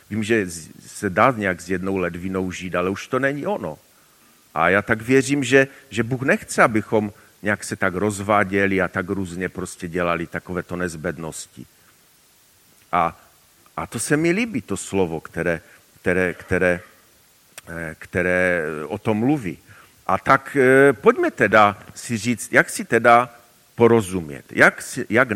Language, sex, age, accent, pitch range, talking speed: Czech, male, 40-59, native, 95-120 Hz, 140 wpm